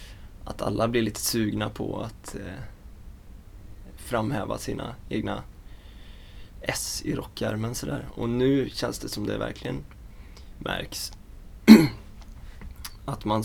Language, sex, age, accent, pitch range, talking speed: Swedish, male, 20-39, native, 95-125 Hz, 115 wpm